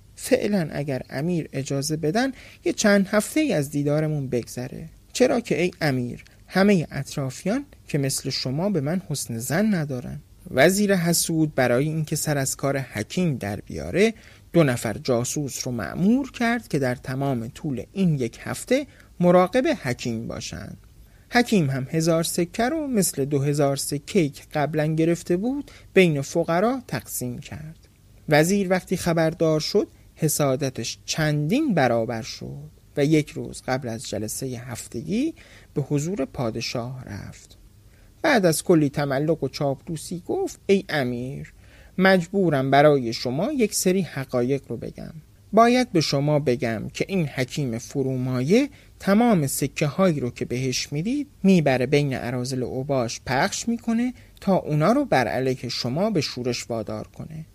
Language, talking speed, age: Persian, 140 wpm, 30-49